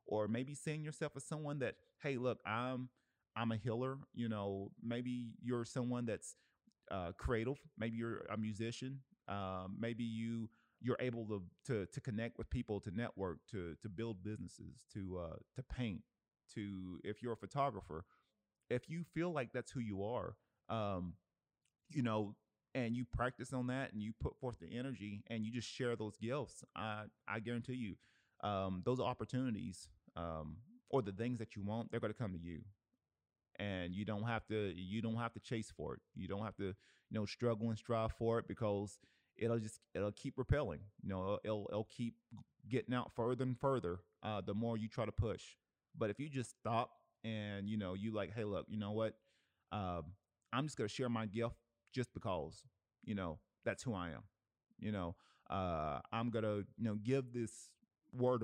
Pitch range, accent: 105-125 Hz, American